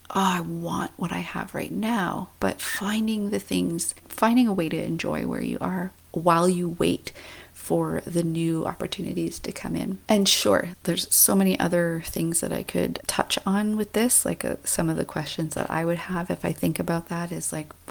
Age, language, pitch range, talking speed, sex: 30-49, English, 165-195 Hz, 200 wpm, female